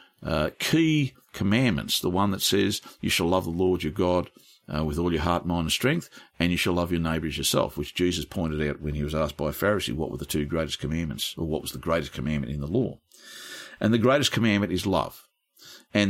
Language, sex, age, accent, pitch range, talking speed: English, male, 50-69, Australian, 85-125 Hz, 230 wpm